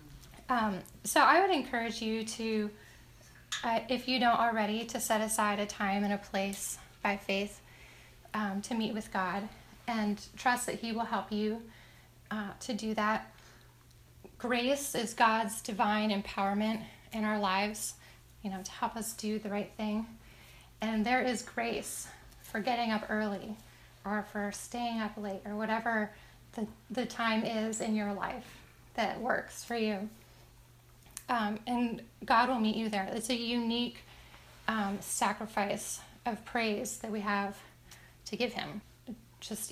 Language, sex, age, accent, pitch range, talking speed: English, female, 10-29, American, 205-235 Hz, 155 wpm